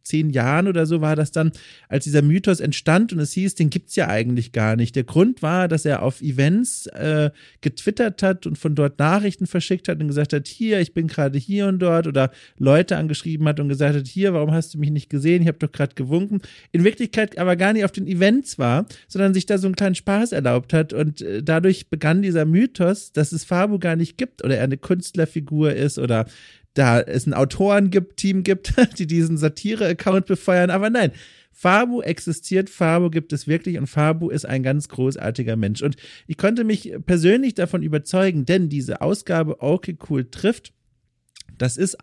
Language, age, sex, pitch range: German, 40-59, male, 145-190 Hz